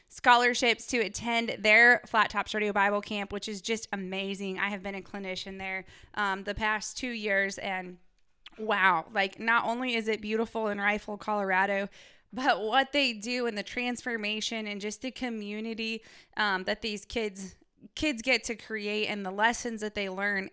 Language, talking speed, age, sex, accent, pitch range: English, 175 wpm, 20-39, female, American, 195-230 Hz